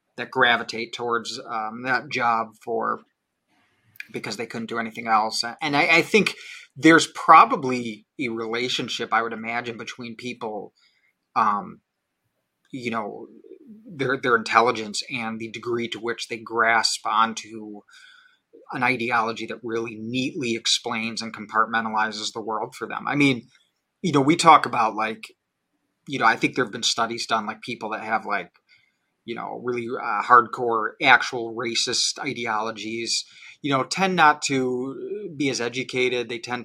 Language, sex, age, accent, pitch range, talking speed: English, male, 30-49, American, 115-125 Hz, 150 wpm